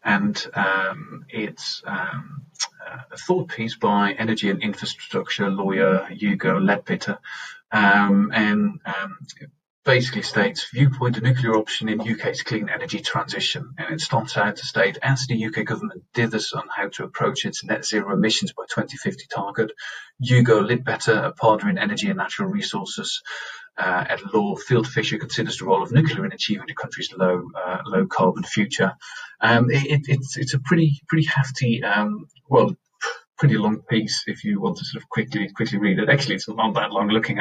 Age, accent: 30-49, British